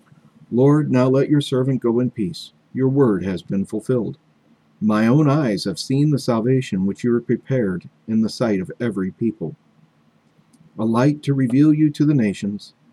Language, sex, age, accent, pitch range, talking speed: English, male, 50-69, American, 95-135 Hz, 175 wpm